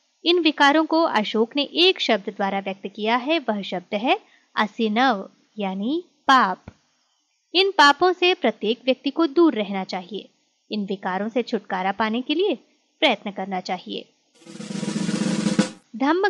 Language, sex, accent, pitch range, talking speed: Hindi, female, native, 210-310 Hz, 135 wpm